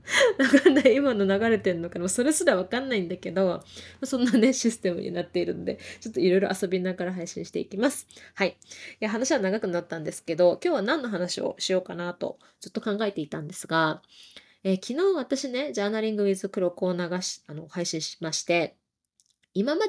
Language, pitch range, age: Japanese, 180-255 Hz, 20-39